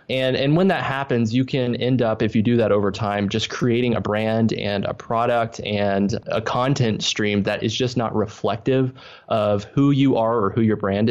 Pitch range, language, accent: 105-130 Hz, English, American